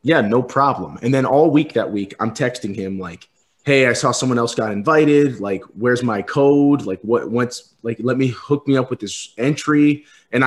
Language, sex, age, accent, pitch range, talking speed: English, male, 30-49, American, 105-130 Hz, 210 wpm